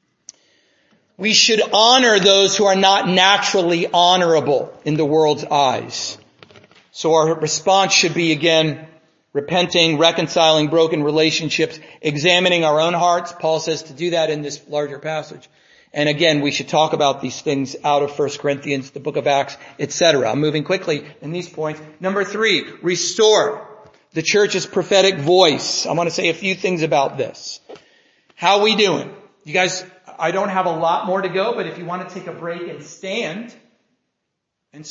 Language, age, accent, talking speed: English, 40-59, American, 170 wpm